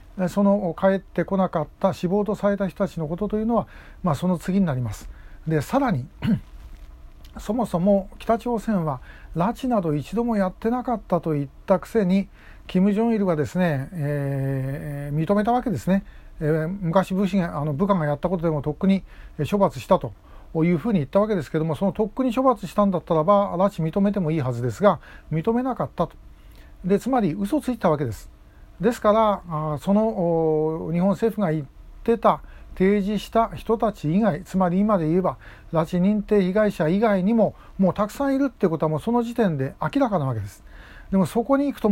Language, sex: Japanese, male